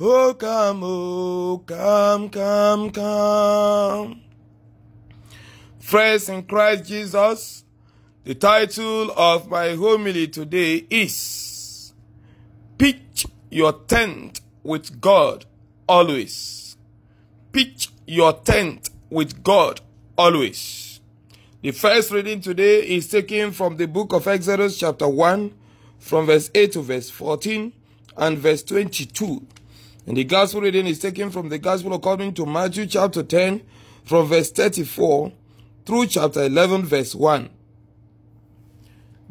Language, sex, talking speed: English, male, 110 wpm